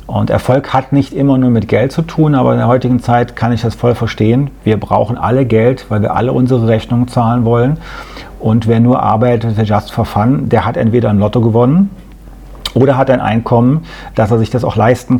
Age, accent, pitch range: 40-59, German, 110-130 Hz